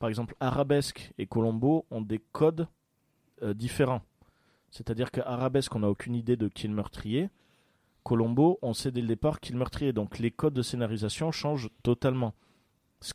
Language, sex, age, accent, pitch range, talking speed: French, male, 30-49, French, 115-150 Hz, 180 wpm